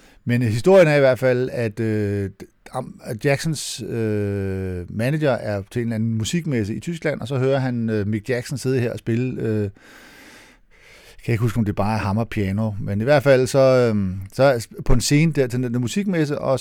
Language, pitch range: Danish, 105-135 Hz